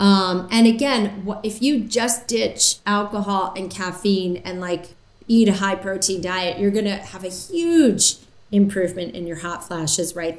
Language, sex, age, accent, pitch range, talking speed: English, female, 30-49, American, 175-210 Hz, 160 wpm